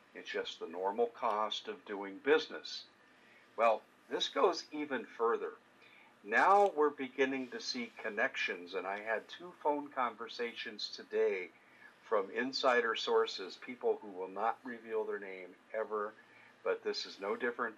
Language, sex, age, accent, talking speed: English, male, 50-69, American, 140 wpm